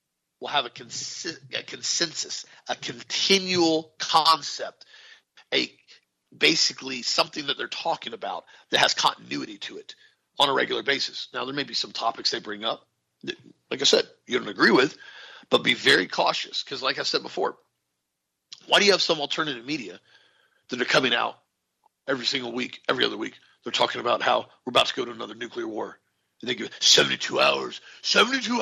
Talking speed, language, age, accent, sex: 180 wpm, English, 40-59, American, male